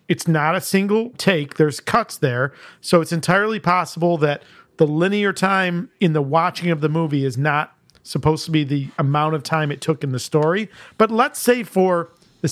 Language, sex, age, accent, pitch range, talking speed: English, male, 40-59, American, 155-190 Hz, 195 wpm